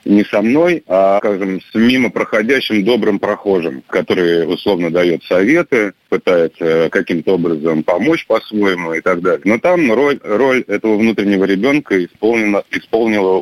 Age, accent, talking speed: 30-49, native, 140 wpm